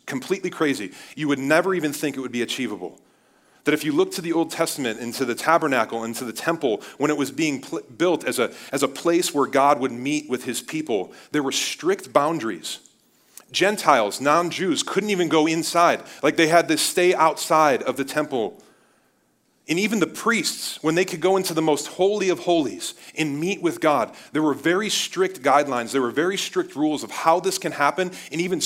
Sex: male